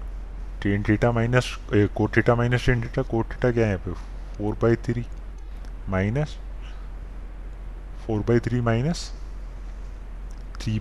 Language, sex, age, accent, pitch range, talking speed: Hindi, male, 20-39, native, 100-115 Hz, 120 wpm